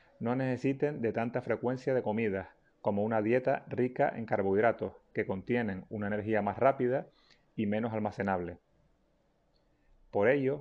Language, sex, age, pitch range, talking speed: Spanish, male, 30-49, 105-130 Hz, 135 wpm